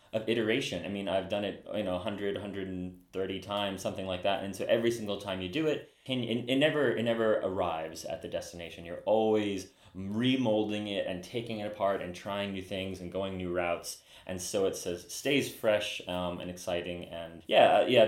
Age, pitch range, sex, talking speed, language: 30-49, 85-100 Hz, male, 200 wpm, English